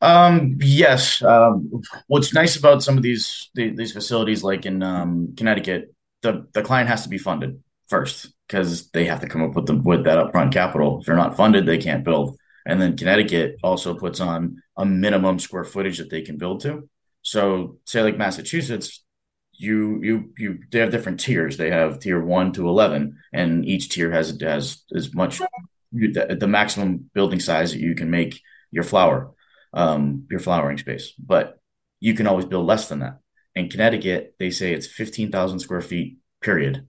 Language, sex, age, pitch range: English, male, 30-49, 80-110 Hz